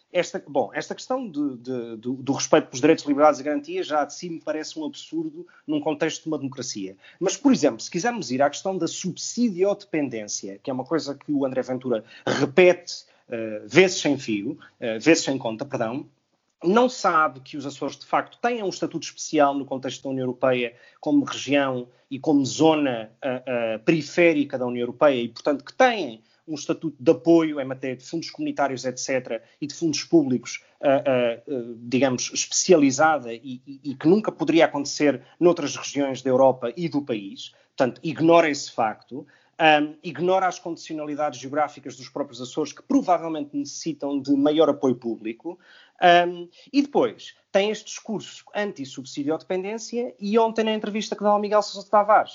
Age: 30-49